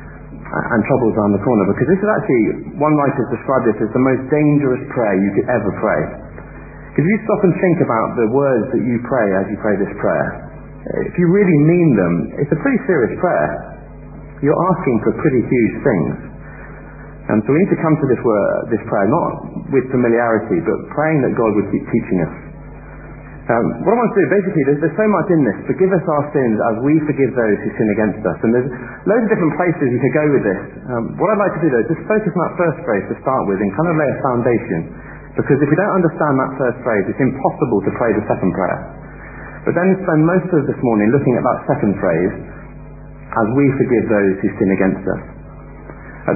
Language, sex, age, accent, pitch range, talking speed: English, male, 40-59, British, 115-170 Hz, 220 wpm